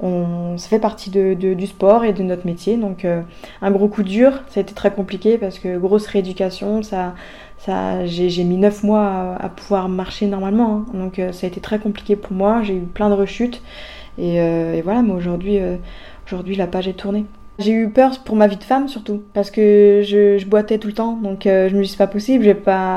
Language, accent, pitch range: French, French, 185-210 Hz